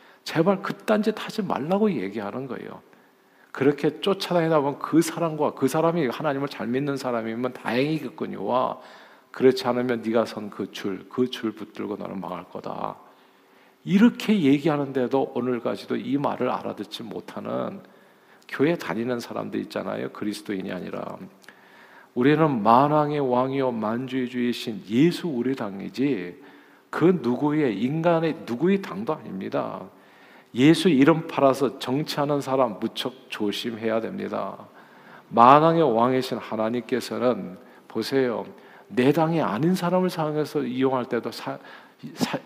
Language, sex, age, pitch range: Korean, male, 50-69, 120-160 Hz